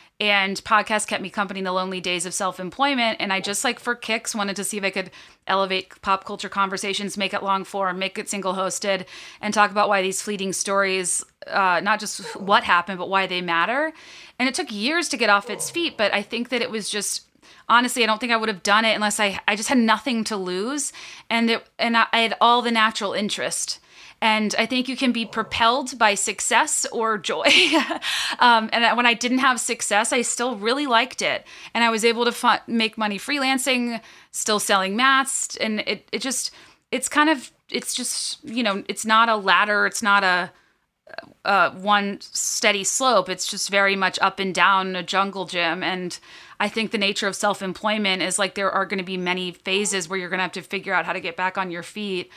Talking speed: 220 wpm